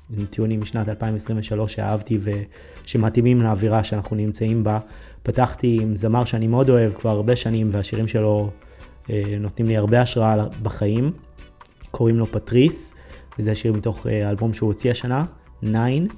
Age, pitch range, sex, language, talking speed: 20-39, 105-115 Hz, male, Hebrew, 140 wpm